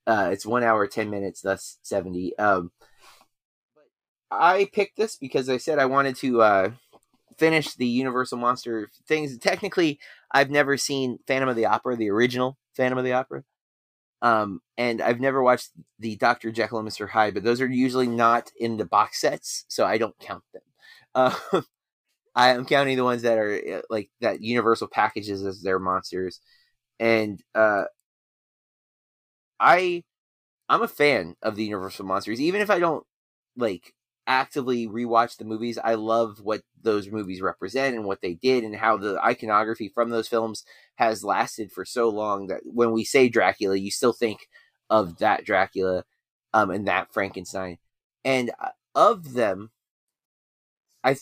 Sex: male